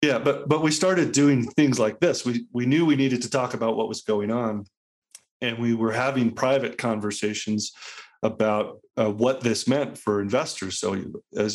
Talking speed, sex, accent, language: 185 wpm, male, American, English